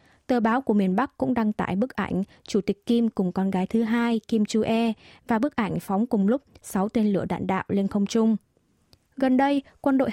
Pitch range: 200-240 Hz